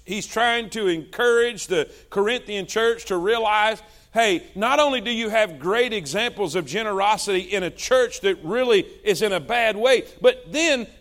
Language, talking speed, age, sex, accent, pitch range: English, 170 wpm, 40-59, male, American, 195-260 Hz